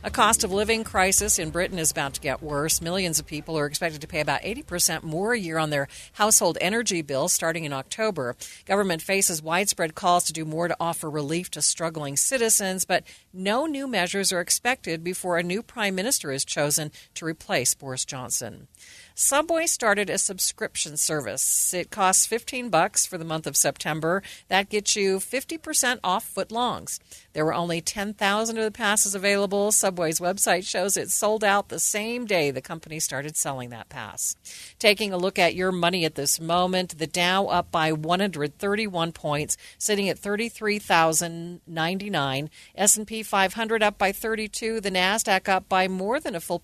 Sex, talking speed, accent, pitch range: female, 170 wpm, American, 160-205 Hz